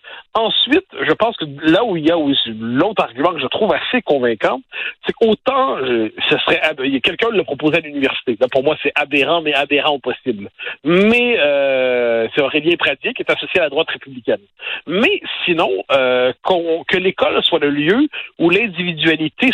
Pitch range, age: 145-220 Hz, 50-69